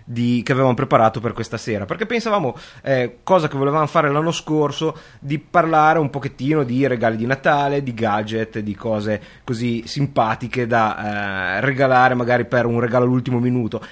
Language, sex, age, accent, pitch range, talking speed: Italian, male, 30-49, native, 120-155 Hz, 165 wpm